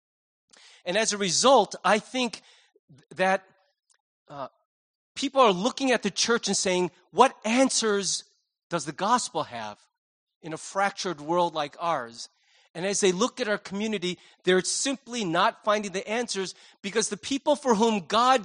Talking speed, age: 155 wpm, 30-49